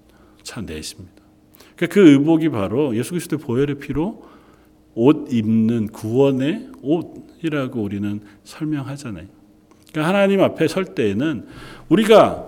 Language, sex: Korean, male